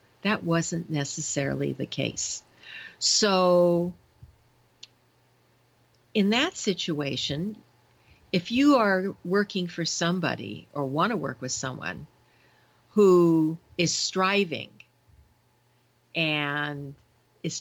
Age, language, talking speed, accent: 50-69, English, 90 wpm, American